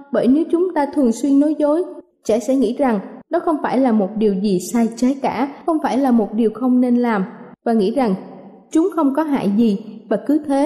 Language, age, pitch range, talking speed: Vietnamese, 20-39, 235-290 Hz, 230 wpm